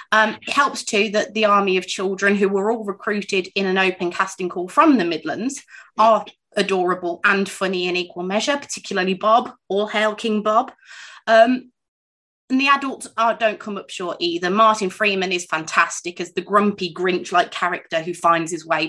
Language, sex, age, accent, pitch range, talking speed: English, female, 20-39, British, 180-220 Hz, 180 wpm